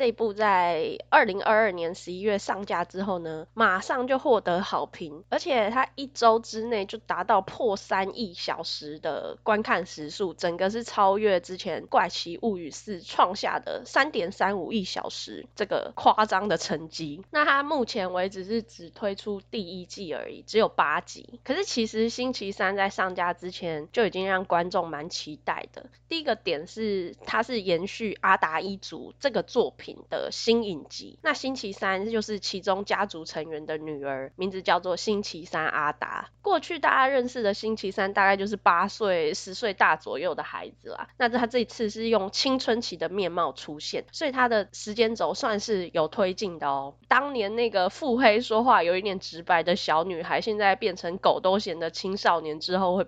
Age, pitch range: 20-39, 175-230 Hz